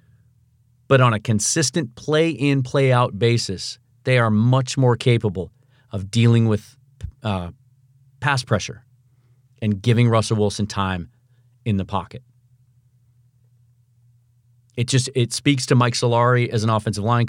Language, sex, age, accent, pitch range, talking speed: English, male, 40-59, American, 115-125 Hz, 130 wpm